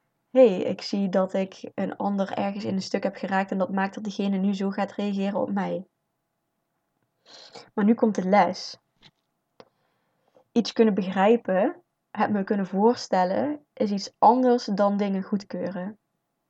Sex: female